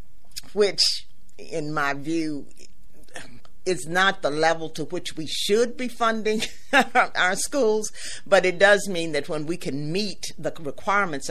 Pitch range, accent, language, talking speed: 130-165 Hz, American, English, 145 wpm